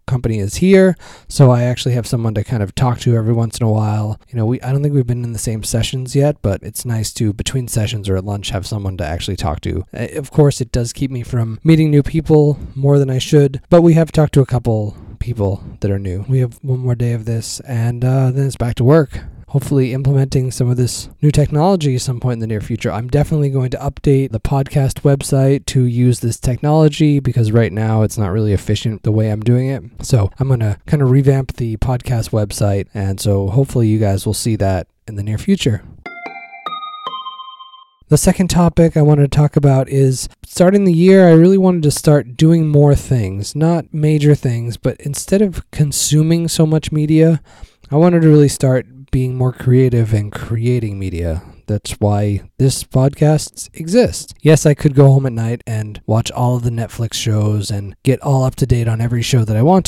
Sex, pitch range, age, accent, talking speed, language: male, 110-145 Hz, 20-39, American, 215 wpm, English